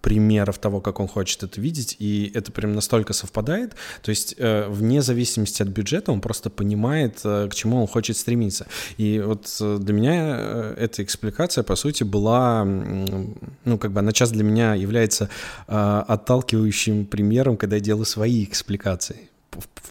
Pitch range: 95-115 Hz